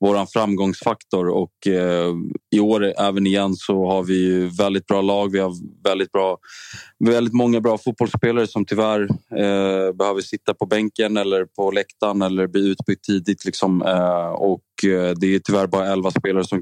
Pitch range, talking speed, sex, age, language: 95-105 Hz, 150 wpm, male, 20-39, Swedish